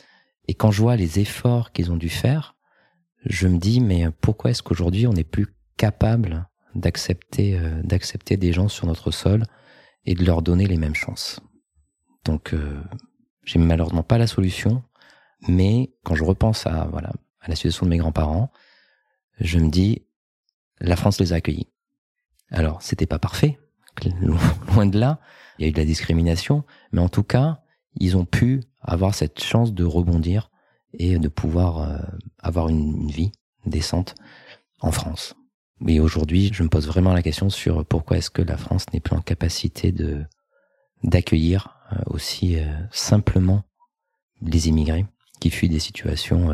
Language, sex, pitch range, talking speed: French, male, 80-110 Hz, 160 wpm